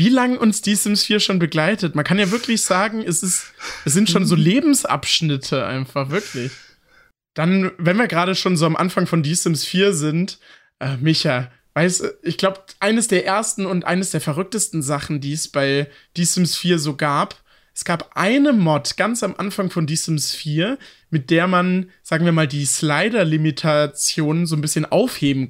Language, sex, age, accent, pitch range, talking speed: German, male, 20-39, German, 160-200 Hz, 185 wpm